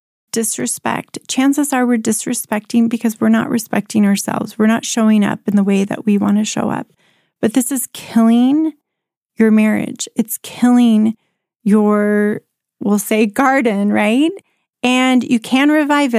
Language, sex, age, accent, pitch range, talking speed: English, female, 30-49, American, 200-240 Hz, 150 wpm